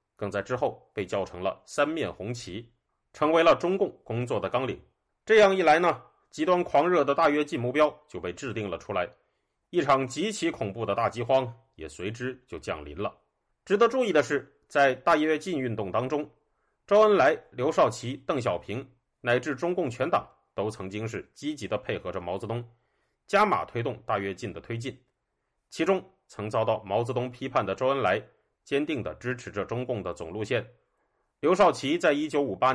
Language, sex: Chinese, male